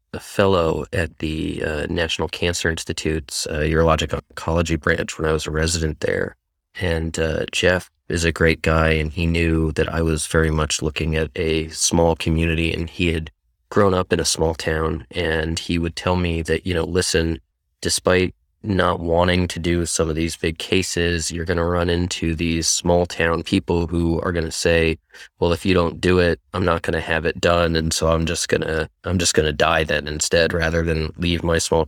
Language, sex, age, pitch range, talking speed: English, male, 20-39, 80-85 Hz, 200 wpm